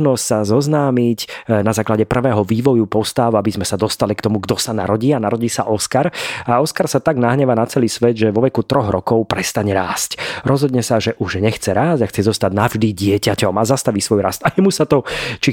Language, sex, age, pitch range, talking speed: Slovak, male, 30-49, 105-125 Hz, 210 wpm